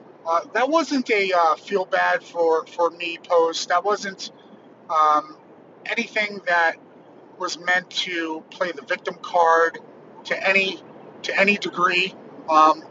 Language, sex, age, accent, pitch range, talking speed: English, male, 30-49, American, 160-195 Hz, 135 wpm